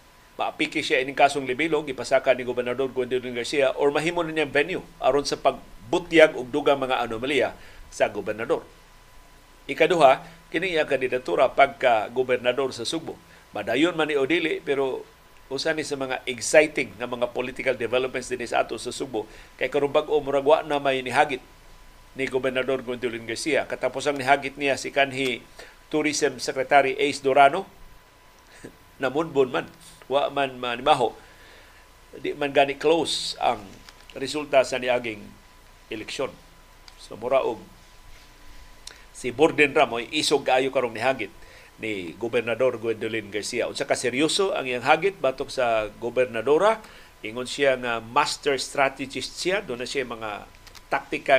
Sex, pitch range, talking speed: male, 125-150 Hz, 135 wpm